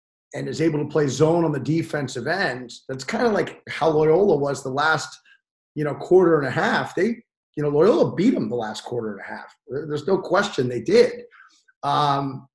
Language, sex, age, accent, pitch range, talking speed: English, male, 30-49, American, 130-165 Hz, 205 wpm